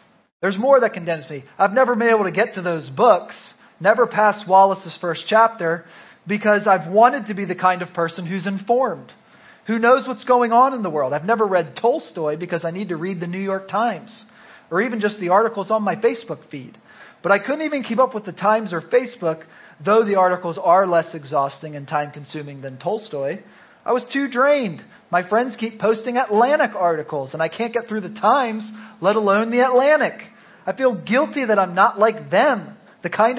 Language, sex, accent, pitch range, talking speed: English, male, American, 170-230 Hz, 205 wpm